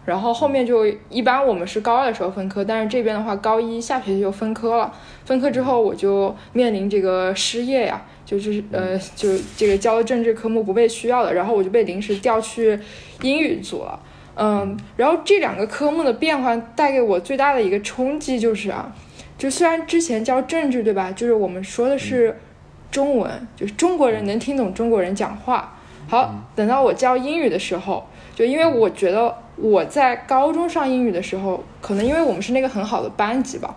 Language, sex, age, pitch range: Chinese, female, 20-39, 205-260 Hz